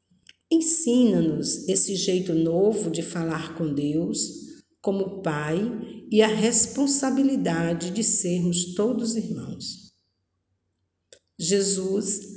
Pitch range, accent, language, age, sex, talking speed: 165-235 Hz, Brazilian, Portuguese, 50-69, female, 85 wpm